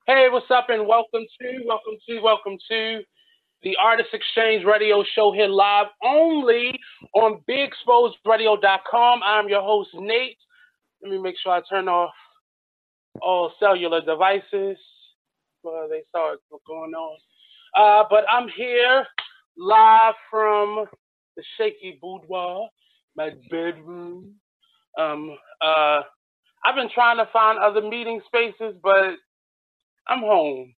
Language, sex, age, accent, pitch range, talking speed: English, male, 20-39, American, 185-235 Hz, 125 wpm